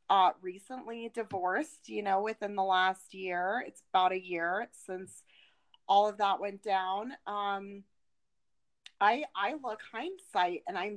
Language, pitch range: English, 195-245 Hz